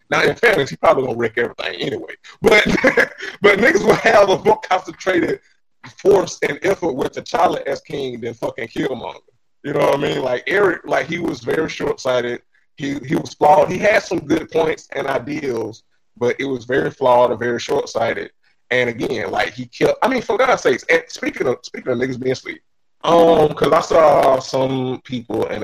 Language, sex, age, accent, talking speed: English, male, 30-49, American, 200 wpm